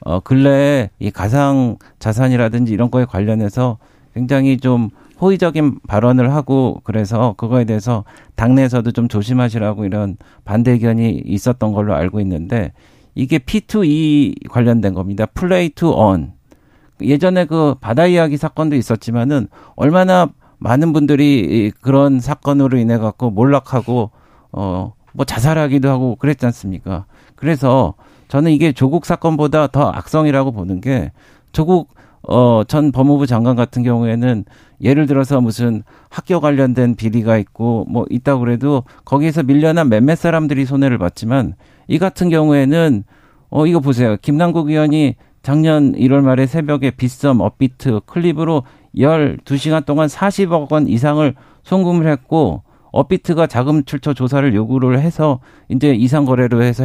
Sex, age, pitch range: male, 50-69, 115-150 Hz